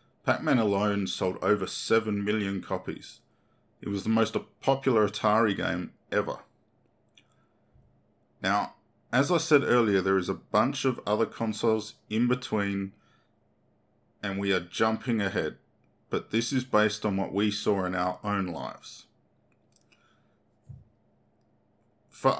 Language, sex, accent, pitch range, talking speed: English, male, Australian, 95-115 Hz, 125 wpm